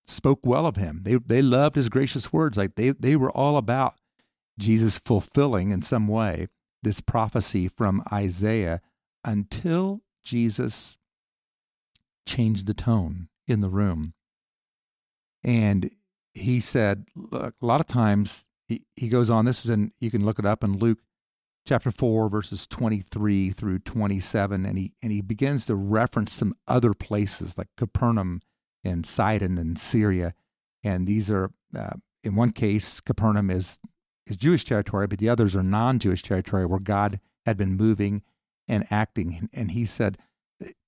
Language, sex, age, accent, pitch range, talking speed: English, male, 50-69, American, 100-120 Hz, 155 wpm